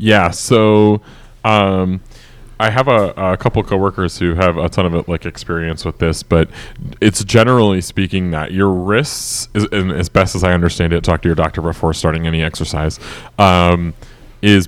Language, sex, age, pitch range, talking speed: English, male, 20-39, 85-110 Hz, 180 wpm